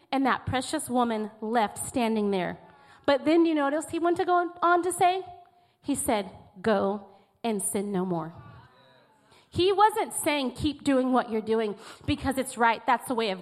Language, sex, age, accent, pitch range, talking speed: Ukrainian, female, 30-49, American, 240-340 Hz, 180 wpm